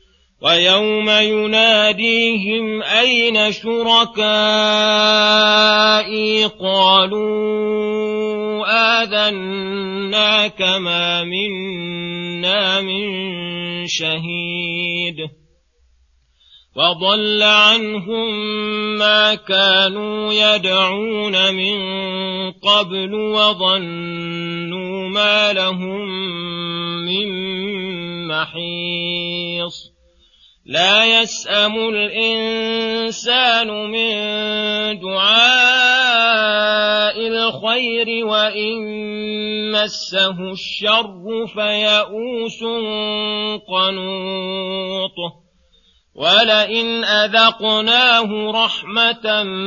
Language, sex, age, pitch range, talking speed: Arabic, male, 40-59, 190-215 Hz, 45 wpm